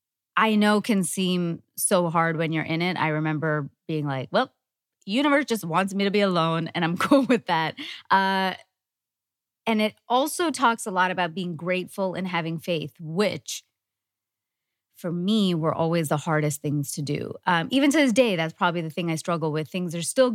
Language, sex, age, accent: English, female, 20-39, American